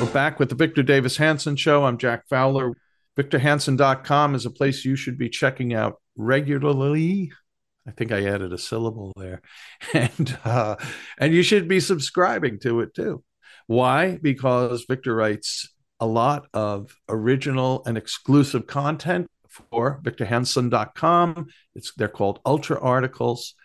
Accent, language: American, English